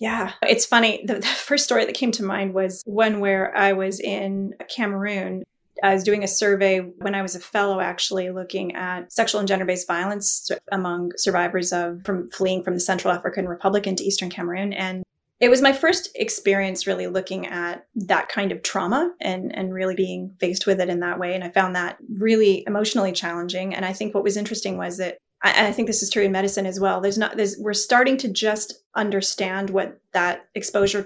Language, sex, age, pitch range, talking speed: English, female, 30-49, 190-230 Hz, 205 wpm